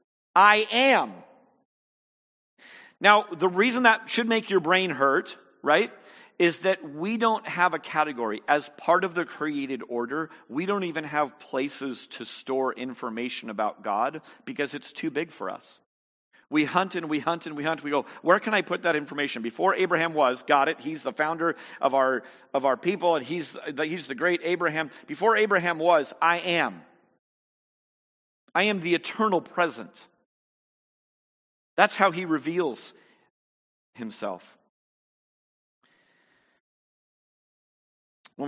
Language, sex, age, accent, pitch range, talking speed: English, male, 40-59, American, 135-180 Hz, 145 wpm